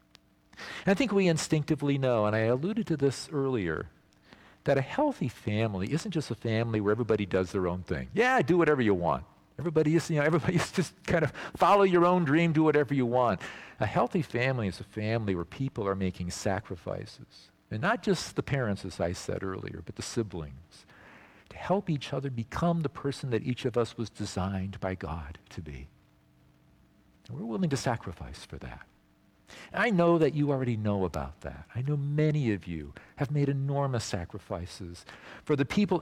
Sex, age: male, 50-69